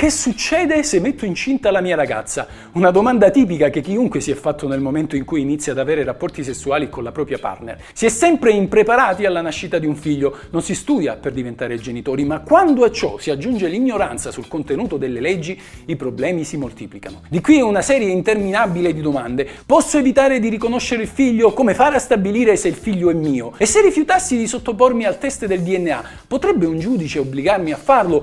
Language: Italian